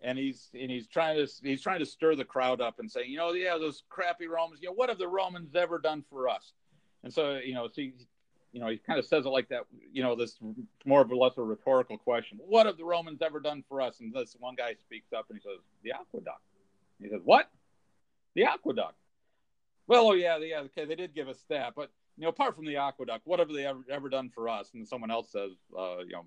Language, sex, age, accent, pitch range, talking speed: English, male, 50-69, American, 130-175 Hz, 255 wpm